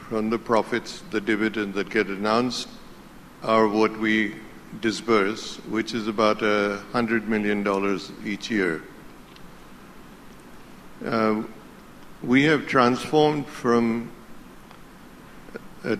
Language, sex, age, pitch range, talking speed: English, male, 60-79, 105-120 Hz, 95 wpm